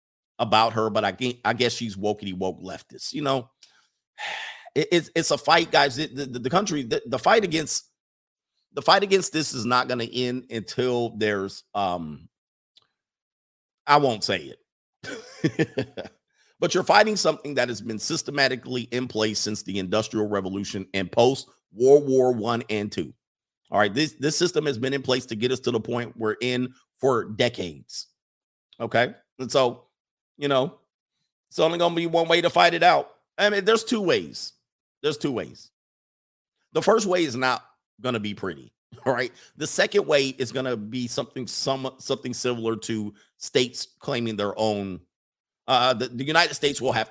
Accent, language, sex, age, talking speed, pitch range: American, English, male, 50-69, 175 wpm, 105-140 Hz